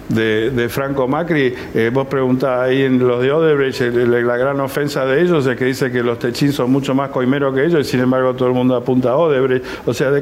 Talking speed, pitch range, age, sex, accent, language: 255 wpm, 120-140 Hz, 60-79, male, Argentinian, Spanish